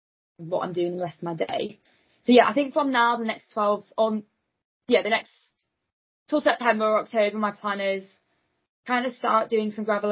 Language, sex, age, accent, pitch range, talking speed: English, female, 20-39, British, 180-210 Hz, 200 wpm